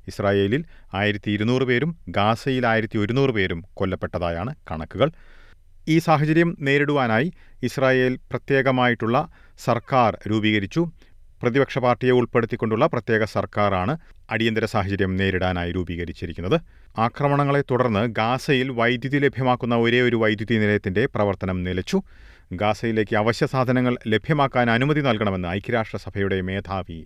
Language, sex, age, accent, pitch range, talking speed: Malayalam, male, 40-59, native, 95-130 Hz, 95 wpm